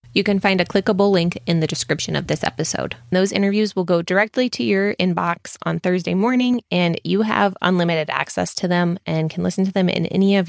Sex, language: female, English